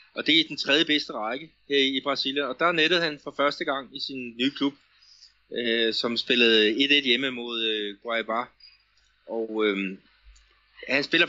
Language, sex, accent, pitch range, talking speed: Danish, male, native, 110-135 Hz, 170 wpm